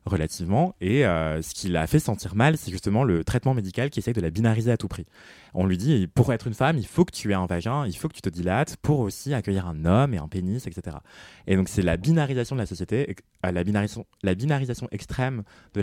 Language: French